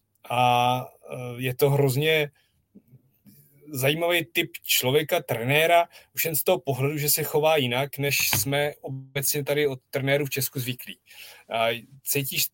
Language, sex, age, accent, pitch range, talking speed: Czech, male, 30-49, native, 135-170 Hz, 130 wpm